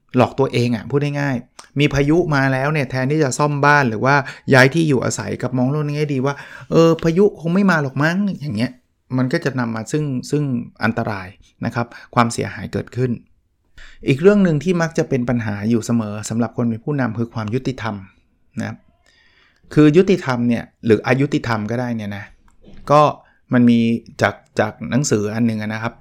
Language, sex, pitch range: Thai, male, 110-140 Hz